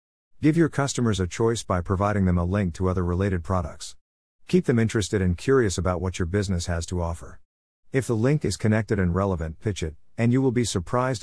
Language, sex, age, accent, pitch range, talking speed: English, male, 50-69, American, 85-110 Hz, 215 wpm